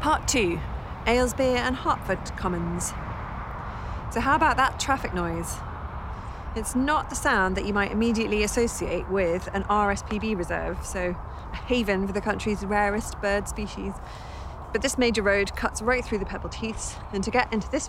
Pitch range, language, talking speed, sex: 170-215 Hz, English, 165 wpm, female